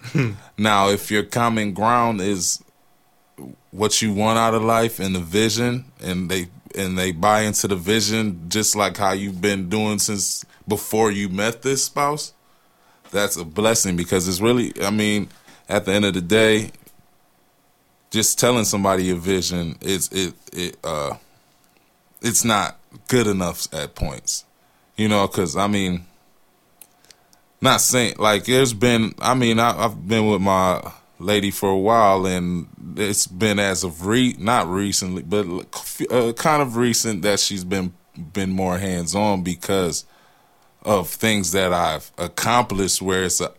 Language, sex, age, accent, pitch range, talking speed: English, male, 20-39, American, 95-110 Hz, 155 wpm